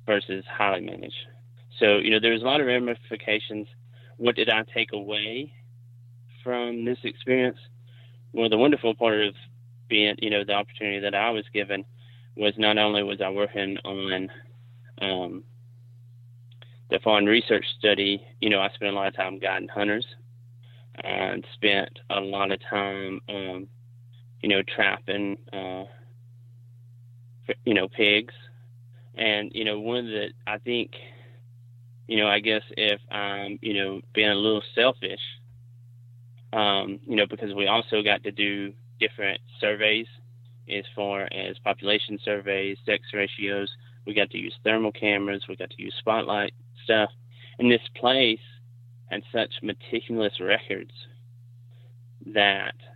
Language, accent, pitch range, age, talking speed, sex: English, American, 105-120 Hz, 20-39, 145 wpm, male